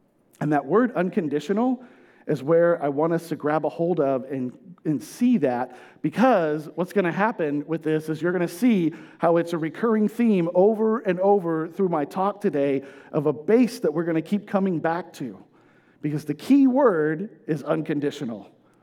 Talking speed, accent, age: 190 wpm, American, 40-59